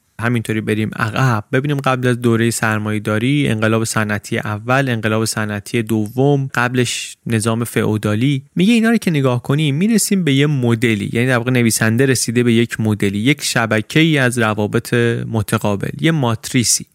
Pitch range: 110-145 Hz